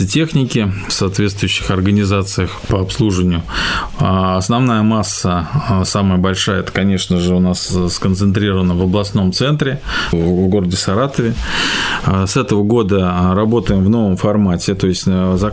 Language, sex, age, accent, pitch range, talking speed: Russian, male, 20-39, native, 95-110 Hz, 125 wpm